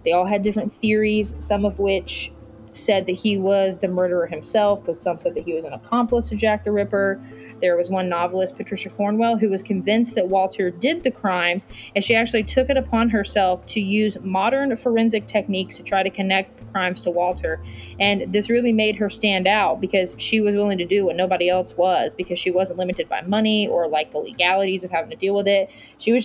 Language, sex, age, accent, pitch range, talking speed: English, female, 20-39, American, 185-225 Hz, 220 wpm